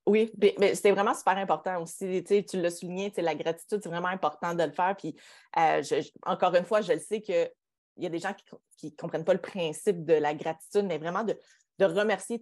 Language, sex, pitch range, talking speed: French, female, 165-210 Hz, 220 wpm